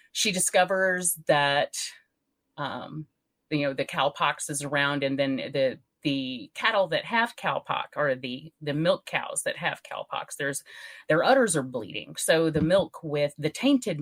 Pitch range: 165-270 Hz